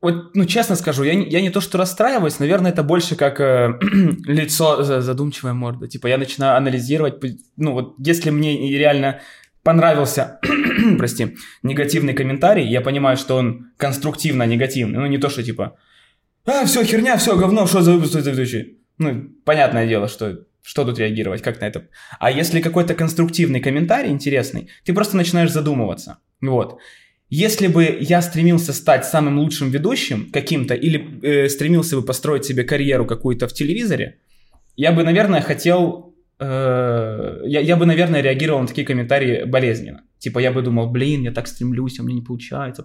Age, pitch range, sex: 20-39, 130-165 Hz, male